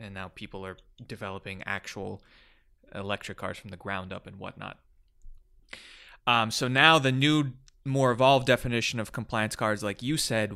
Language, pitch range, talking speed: English, 100-120 Hz, 160 wpm